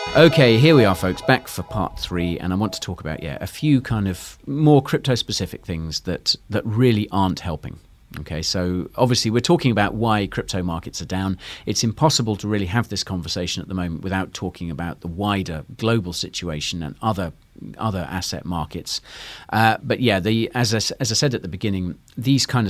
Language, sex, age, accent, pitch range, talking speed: English, male, 40-59, British, 90-120 Hz, 200 wpm